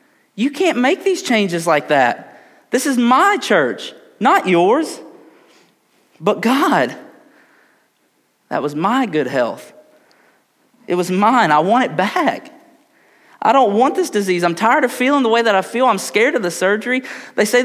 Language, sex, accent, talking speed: English, male, American, 165 wpm